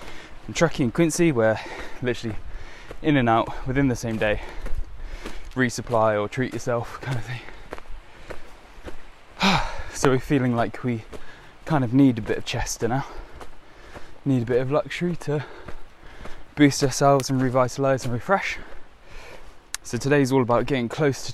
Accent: British